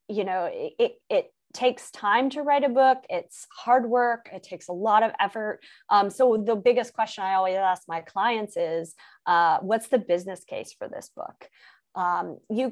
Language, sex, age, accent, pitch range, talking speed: English, female, 20-39, American, 185-230 Hz, 195 wpm